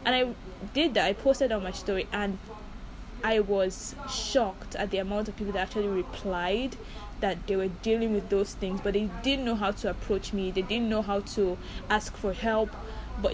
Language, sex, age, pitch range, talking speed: English, female, 10-29, 195-225 Hz, 200 wpm